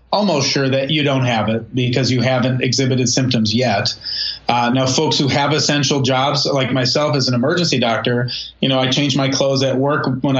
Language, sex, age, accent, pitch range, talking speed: English, male, 30-49, American, 125-140 Hz, 200 wpm